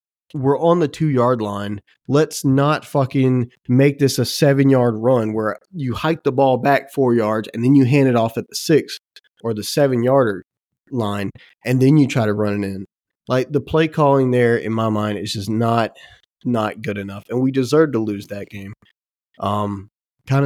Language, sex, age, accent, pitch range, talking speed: English, male, 30-49, American, 110-135 Hz, 195 wpm